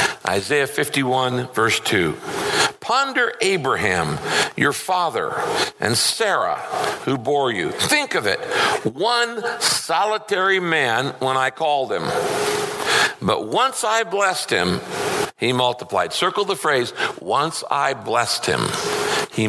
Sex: male